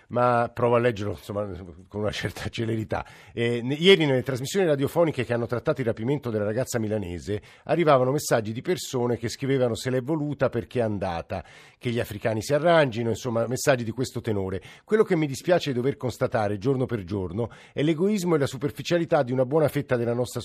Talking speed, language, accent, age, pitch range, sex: 190 wpm, Italian, native, 50-69, 115-150 Hz, male